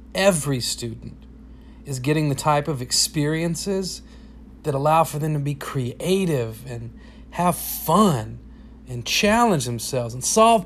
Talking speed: 130 wpm